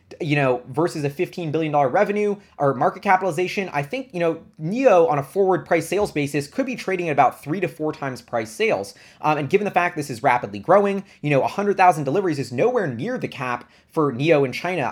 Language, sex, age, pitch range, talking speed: English, male, 20-39, 130-170 Hz, 215 wpm